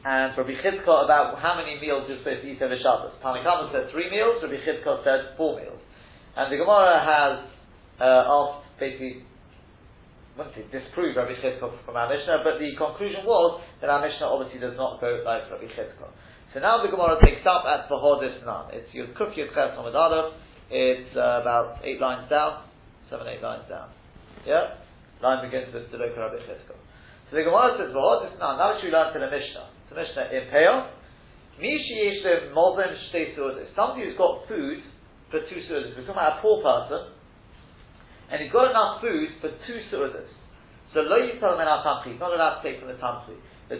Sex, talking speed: male, 200 wpm